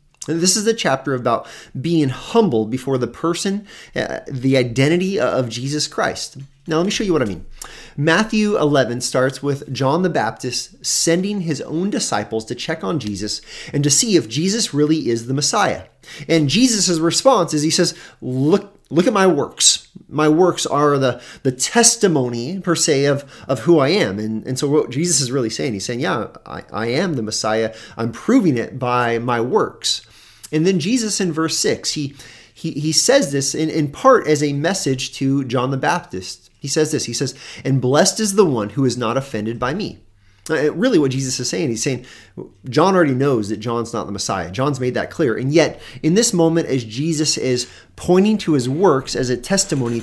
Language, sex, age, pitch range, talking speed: English, male, 30-49, 120-165 Hz, 200 wpm